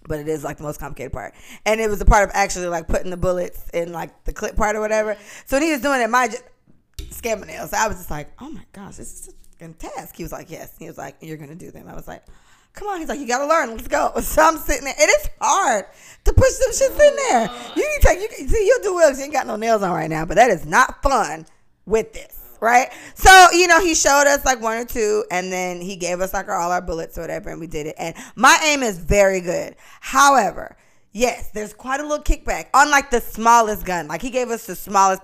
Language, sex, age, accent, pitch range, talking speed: English, female, 20-39, American, 175-275 Hz, 270 wpm